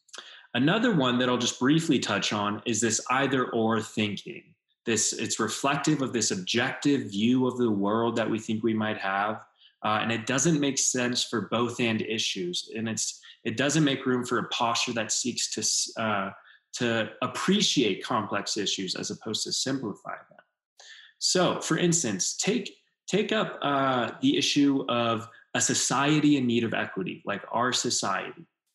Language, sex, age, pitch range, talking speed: English, male, 20-39, 110-140 Hz, 165 wpm